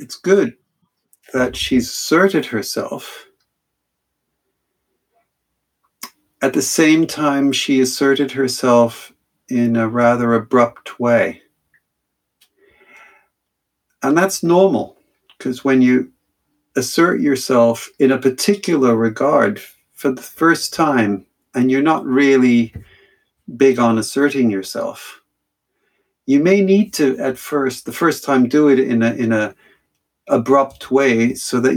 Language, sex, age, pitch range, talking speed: English, male, 60-79, 115-145 Hz, 115 wpm